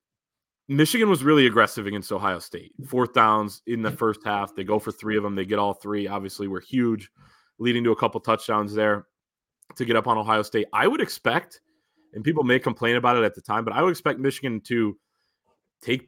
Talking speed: 215 wpm